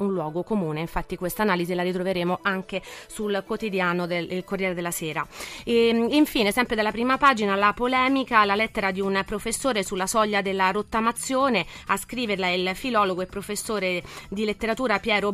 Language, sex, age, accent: Italian, female, 30-49, native